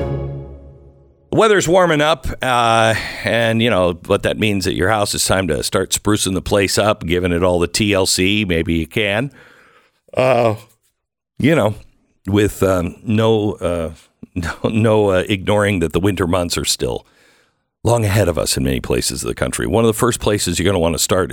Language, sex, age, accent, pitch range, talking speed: English, male, 60-79, American, 85-110 Hz, 185 wpm